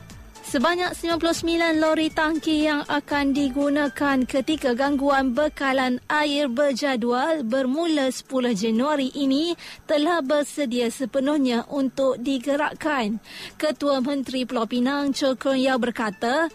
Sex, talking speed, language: female, 100 wpm, Malay